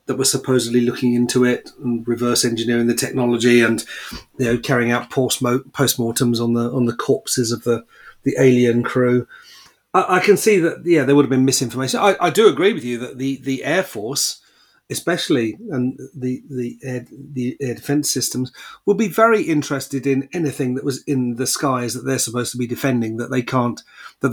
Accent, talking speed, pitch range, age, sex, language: British, 195 wpm, 120-140 Hz, 40-59, male, English